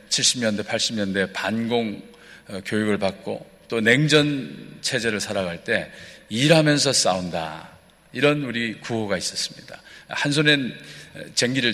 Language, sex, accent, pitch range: Korean, male, native, 115-165 Hz